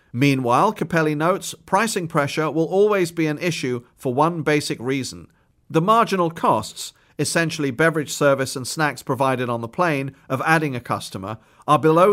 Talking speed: 160 wpm